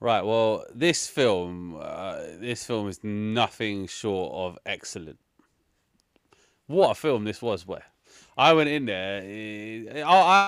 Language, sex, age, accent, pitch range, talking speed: English, male, 30-49, British, 100-135 Hz, 135 wpm